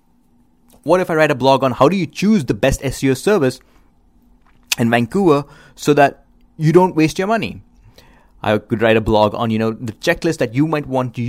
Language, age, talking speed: English, 30-49, 205 wpm